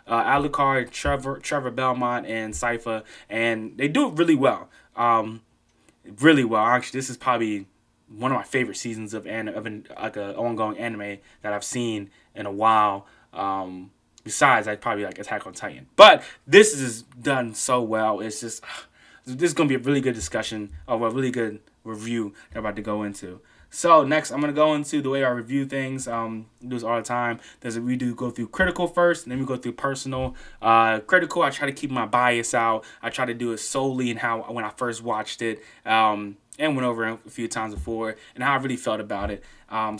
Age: 20-39